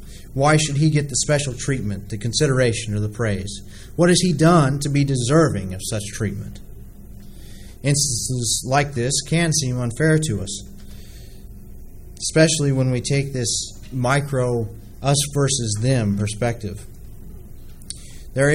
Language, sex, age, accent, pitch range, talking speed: English, male, 30-49, American, 105-140 Hz, 125 wpm